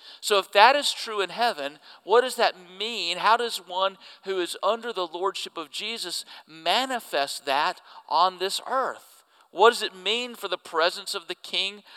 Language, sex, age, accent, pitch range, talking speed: English, male, 50-69, American, 195-265 Hz, 180 wpm